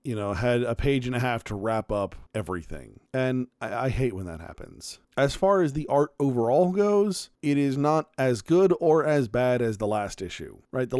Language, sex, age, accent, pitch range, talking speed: English, male, 40-59, American, 115-150 Hz, 220 wpm